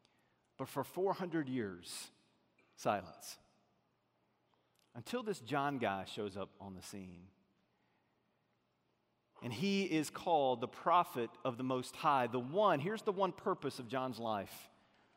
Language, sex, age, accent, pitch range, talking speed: English, male, 40-59, American, 135-180 Hz, 130 wpm